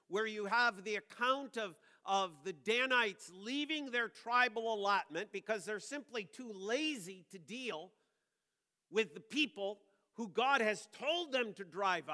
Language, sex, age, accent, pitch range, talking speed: English, male, 50-69, American, 200-260 Hz, 150 wpm